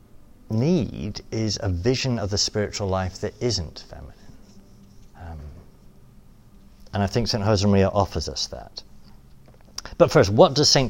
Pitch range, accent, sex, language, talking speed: 90-115 Hz, British, male, English, 140 wpm